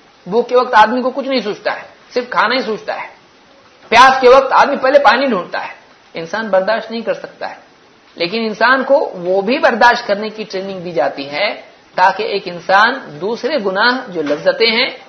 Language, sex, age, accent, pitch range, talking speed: English, male, 50-69, Indian, 190-240 Hz, 185 wpm